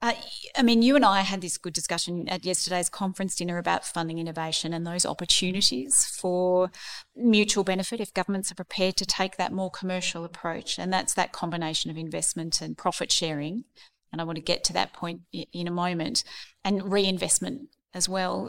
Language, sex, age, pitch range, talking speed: English, female, 30-49, 165-190 Hz, 185 wpm